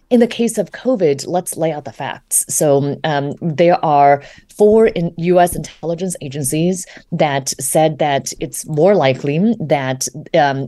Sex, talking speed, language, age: female, 150 wpm, English, 30-49